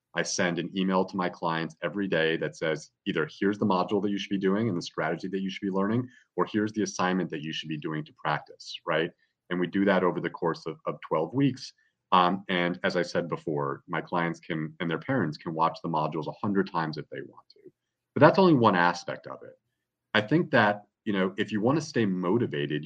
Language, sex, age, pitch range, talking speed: English, male, 30-49, 85-110 Hz, 240 wpm